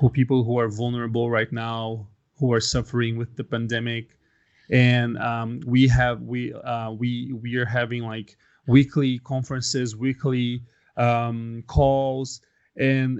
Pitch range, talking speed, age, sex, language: 120-135 Hz, 130 wpm, 30-49, male, English